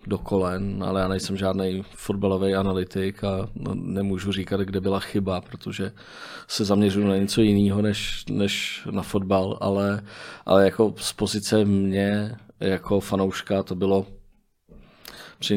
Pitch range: 95-105 Hz